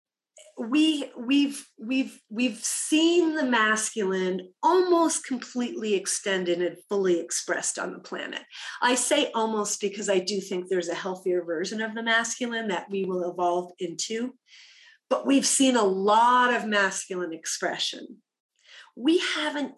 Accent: American